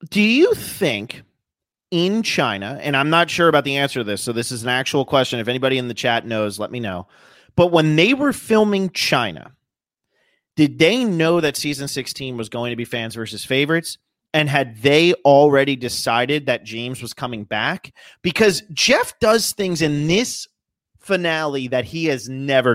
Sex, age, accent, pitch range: male, 30-49, American, 125-175 Hz